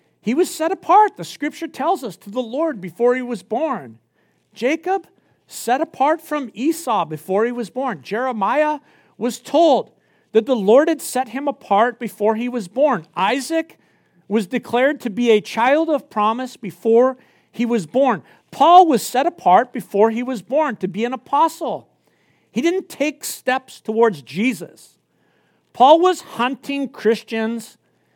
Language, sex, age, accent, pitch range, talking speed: English, male, 50-69, American, 205-285 Hz, 155 wpm